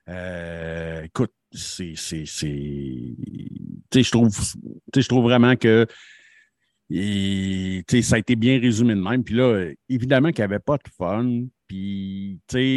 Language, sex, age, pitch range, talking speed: French, male, 60-79, 90-120 Hz, 125 wpm